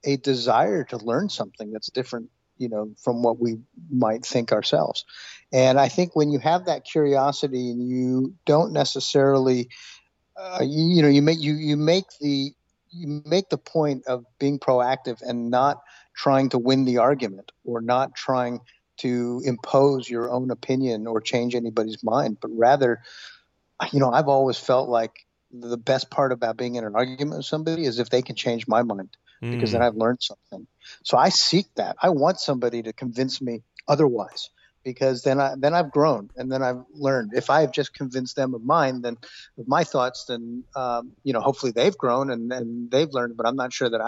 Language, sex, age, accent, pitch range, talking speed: English, male, 50-69, American, 120-140 Hz, 195 wpm